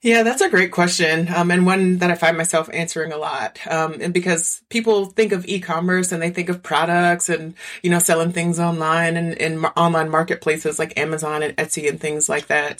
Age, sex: 30-49, female